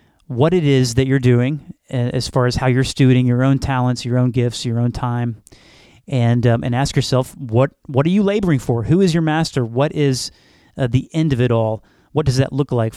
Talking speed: 225 wpm